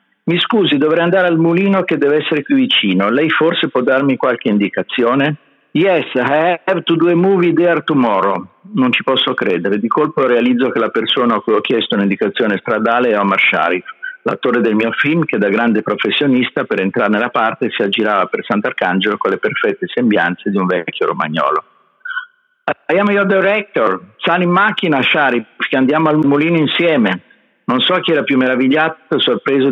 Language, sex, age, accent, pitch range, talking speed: Italian, male, 50-69, native, 120-190 Hz, 180 wpm